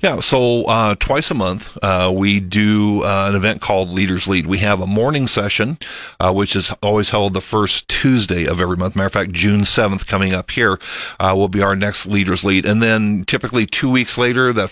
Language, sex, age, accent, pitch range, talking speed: English, male, 40-59, American, 95-115 Hz, 215 wpm